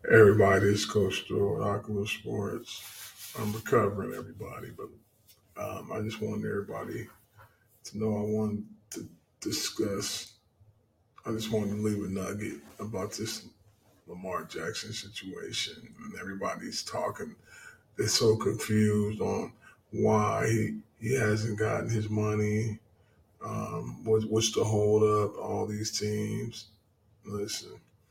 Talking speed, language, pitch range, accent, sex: 115 wpm, English, 105-110 Hz, American, male